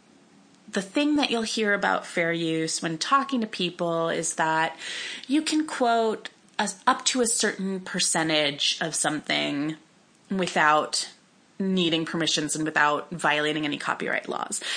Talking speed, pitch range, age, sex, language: 135 wpm, 165-230 Hz, 30-49, female, English